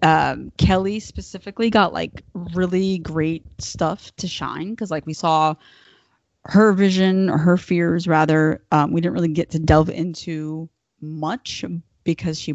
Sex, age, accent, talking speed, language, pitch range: female, 20-39, American, 145 wpm, English, 155-195 Hz